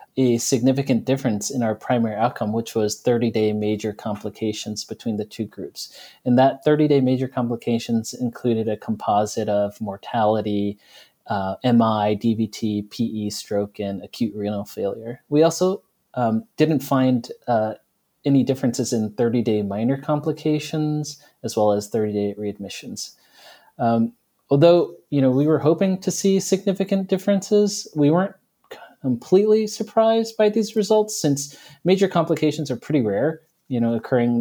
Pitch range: 115-150 Hz